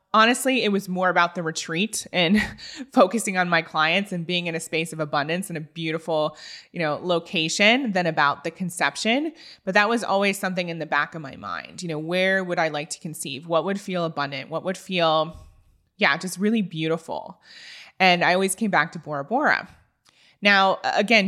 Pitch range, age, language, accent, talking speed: 165-205 Hz, 20-39, English, American, 195 wpm